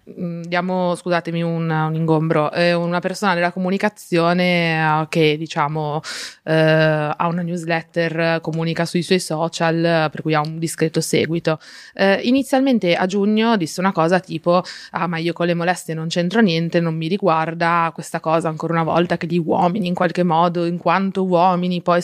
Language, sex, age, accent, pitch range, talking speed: Italian, female, 20-39, native, 165-205 Hz, 165 wpm